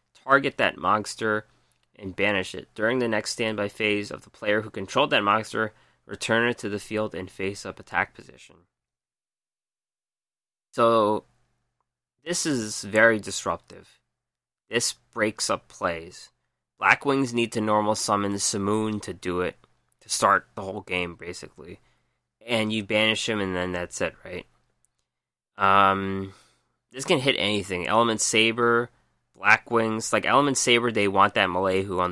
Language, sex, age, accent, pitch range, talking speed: English, male, 20-39, American, 95-115 Hz, 150 wpm